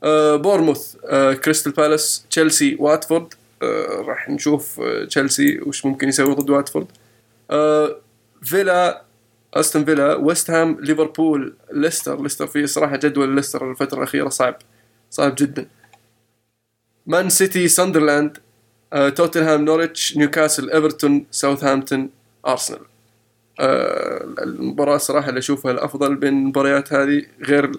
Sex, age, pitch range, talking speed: male, 20-39, 135-155 Hz, 105 wpm